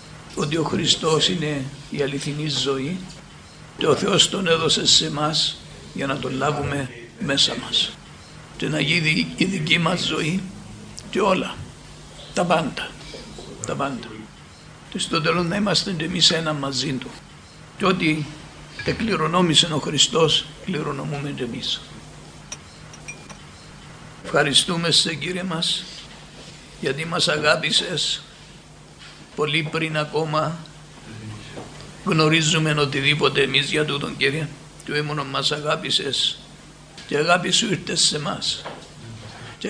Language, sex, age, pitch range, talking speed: Greek, male, 60-79, 145-175 Hz, 115 wpm